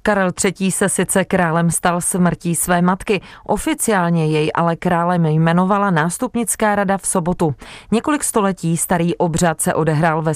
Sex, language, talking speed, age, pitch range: female, Czech, 145 wpm, 30-49, 165-200 Hz